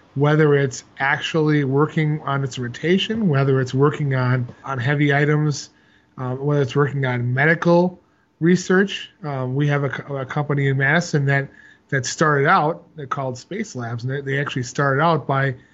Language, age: English, 30-49